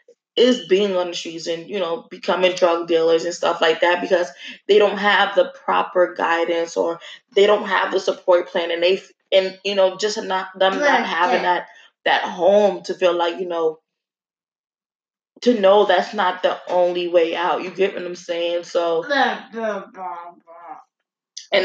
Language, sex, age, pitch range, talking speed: English, female, 20-39, 175-200 Hz, 170 wpm